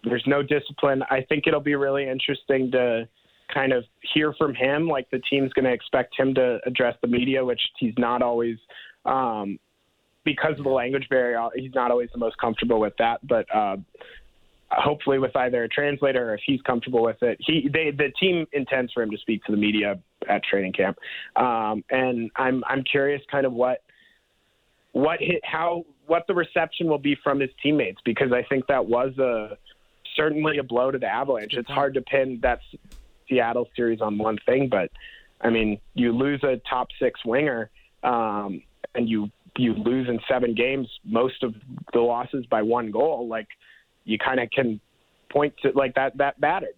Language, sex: English, male